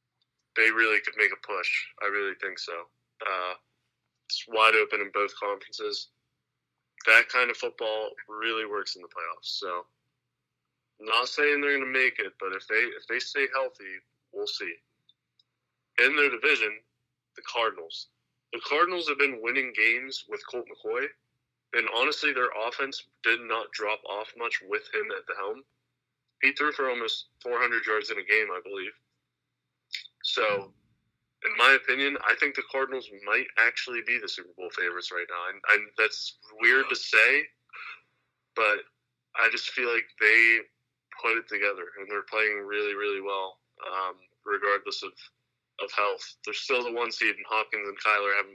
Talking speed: 165 wpm